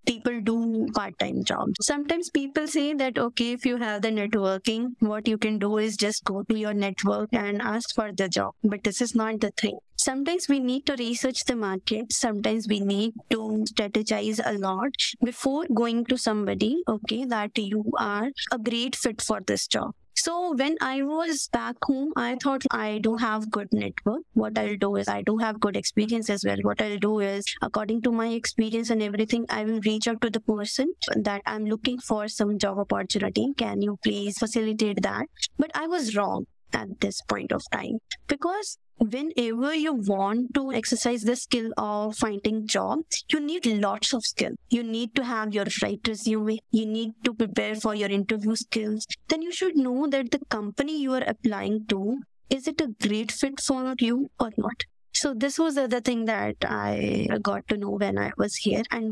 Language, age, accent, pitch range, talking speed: English, 20-39, Indian, 215-265 Hz, 195 wpm